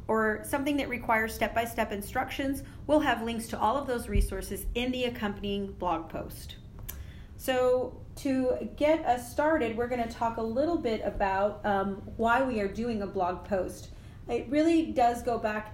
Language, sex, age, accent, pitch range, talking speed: English, female, 30-49, American, 205-245 Hz, 170 wpm